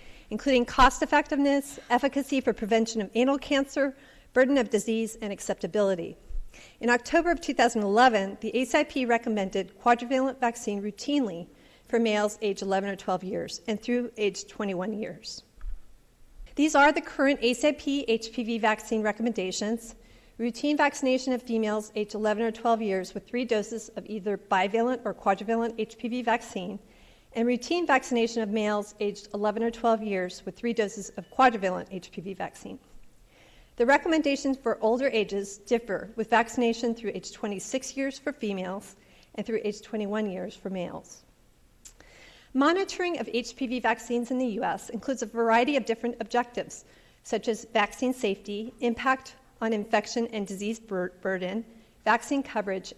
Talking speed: 145 wpm